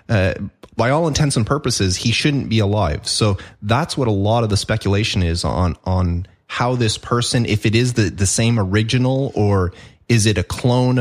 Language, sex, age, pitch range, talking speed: English, male, 30-49, 100-115 Hz, 195 wpm